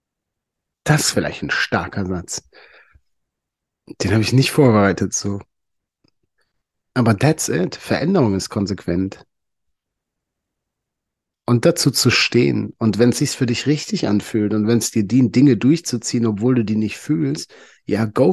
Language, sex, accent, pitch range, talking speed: German, male, German, 100-125 Hz, 145 wpm